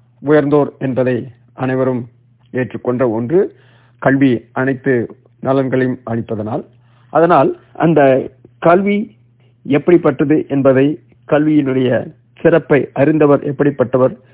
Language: Tamil